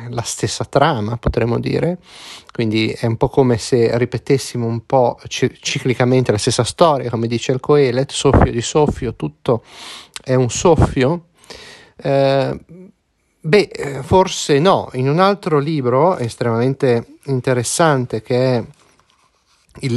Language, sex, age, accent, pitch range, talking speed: Italian, male, 30-49, native, 115-140 Hz, 125 wpm